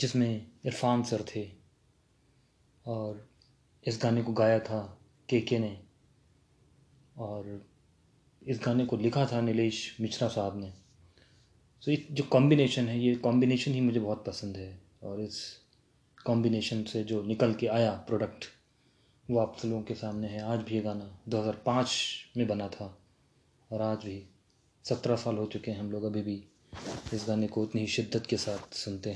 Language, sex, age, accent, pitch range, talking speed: Hindi, male, 20-39, native, 105-120 Hz, 160 wpm